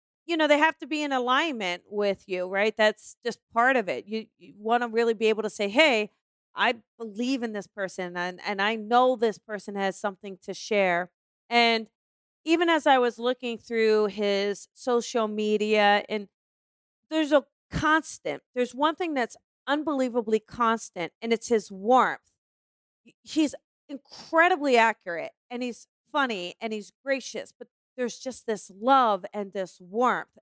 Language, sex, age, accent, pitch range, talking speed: English, female, 40-59, American, 220-305 Hz, 160 wpm